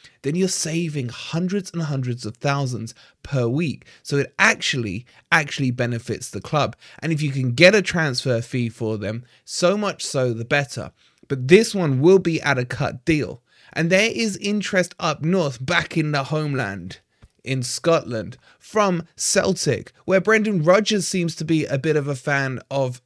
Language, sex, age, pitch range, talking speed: English, male, 20-39, 125-170 Hz, 175 wpm